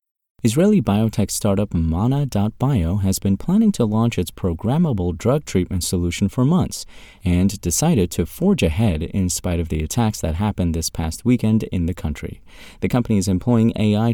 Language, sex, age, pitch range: English, male, 30-49, 85-115 Hz